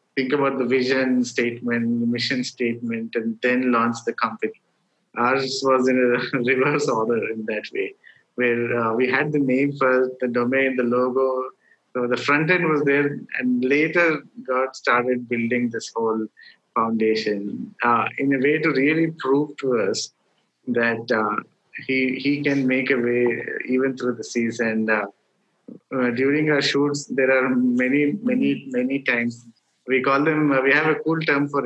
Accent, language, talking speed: Indian, English, 170 wpm